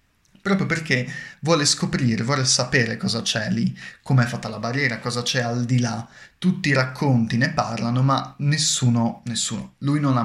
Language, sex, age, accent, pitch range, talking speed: Italian, male, 20-39, native, 115-140 Hz, 170 wpm